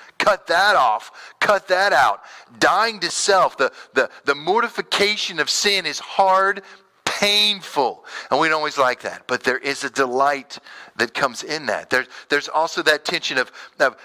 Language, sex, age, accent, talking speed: English, male, 40-59, American, 170 wpm